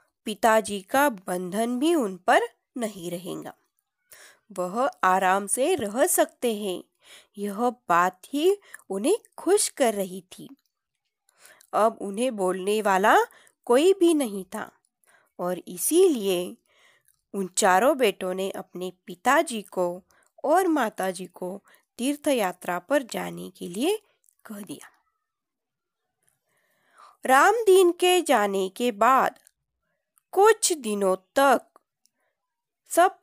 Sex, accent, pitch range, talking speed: female, native, 200-330 Hz, 110 wpm